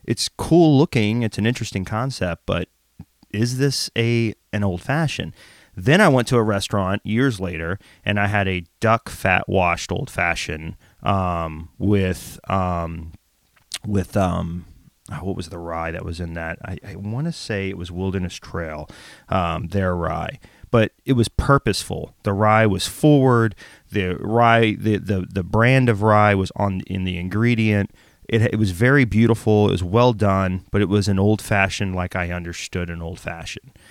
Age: 30-49